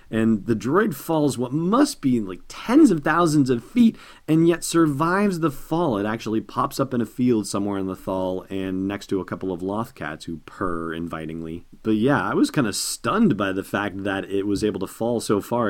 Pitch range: 95-120 Hz